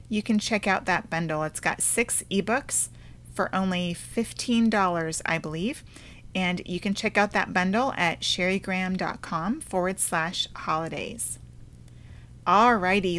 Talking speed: 125 wpm